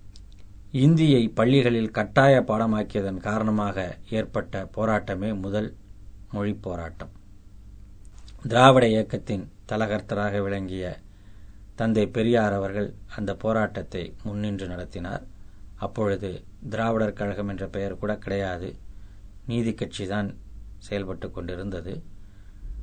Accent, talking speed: native, 85 wpm